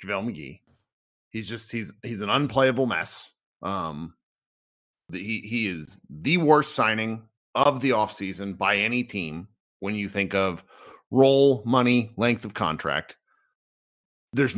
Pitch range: 100-150 Hz